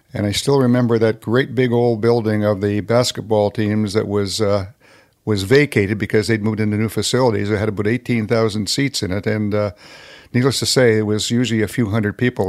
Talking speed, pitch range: 205 wpm, 105-135 Hz